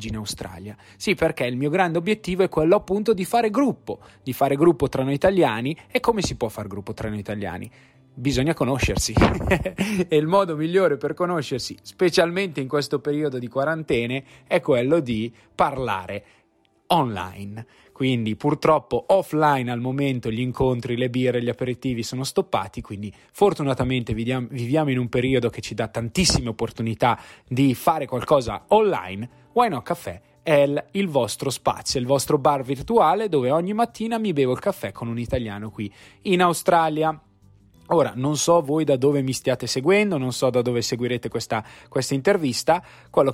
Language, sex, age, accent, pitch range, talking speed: Italian, male, 20-39, native, 115-155 Hz, 165 wpm